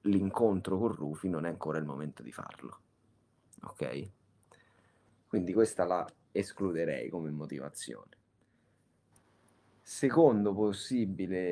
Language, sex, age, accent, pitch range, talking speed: Italian, male, 30-49, native, 90-115 Hz, 100 wpm